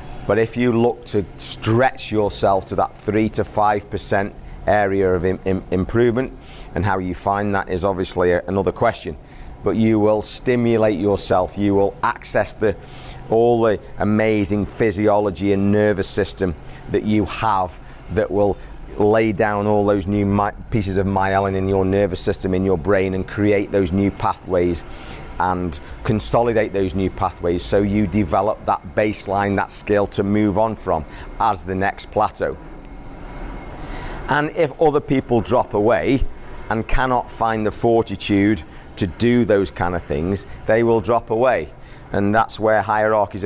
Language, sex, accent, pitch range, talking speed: English, male, British, 95-110 Hz, 150 wpm